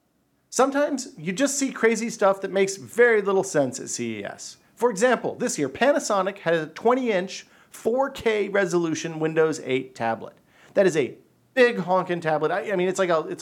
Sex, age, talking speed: male, 40-59, 170 wpm